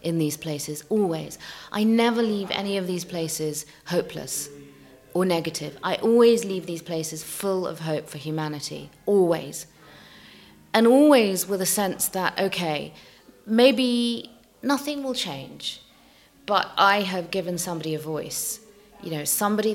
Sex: female